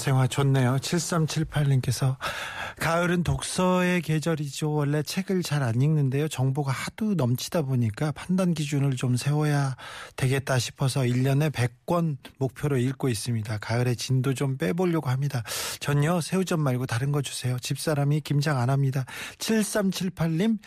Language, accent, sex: Korean, native, male